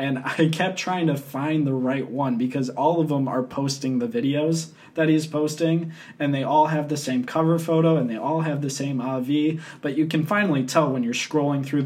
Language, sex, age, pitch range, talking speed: English, male, 20-39, 130-165 Hz, 225 wpm